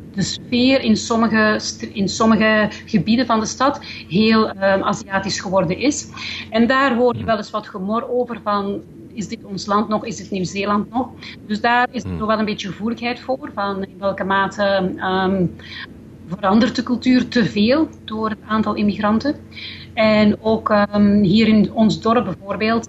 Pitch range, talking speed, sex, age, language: 185-220 Hz, 165 wpm, female, 30-49, Dutch